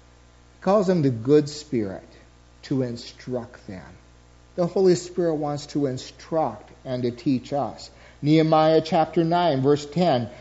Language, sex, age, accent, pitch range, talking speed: English, male, 50-69, American, 125-165 Hz, 140 wpm